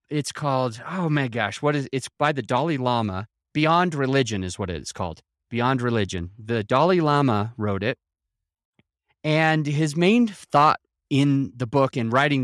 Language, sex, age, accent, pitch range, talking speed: English, male, 30-49, American, 120-155 Hz, 165 wpm